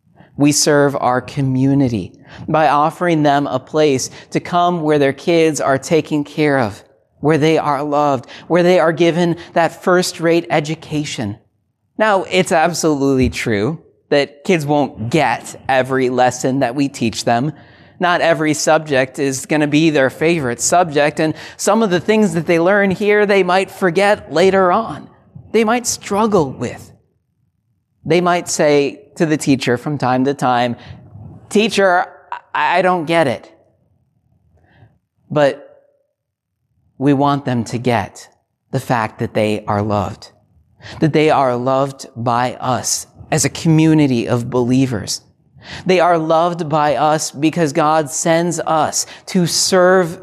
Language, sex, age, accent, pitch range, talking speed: English, male, 40-59, American, 130-175 Hz, 145 wpm